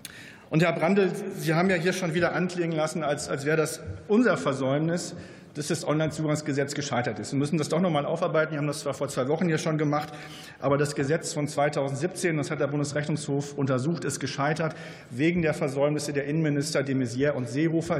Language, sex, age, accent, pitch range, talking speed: German, male, 40-59, German, 145-165 Hz, 200 wpm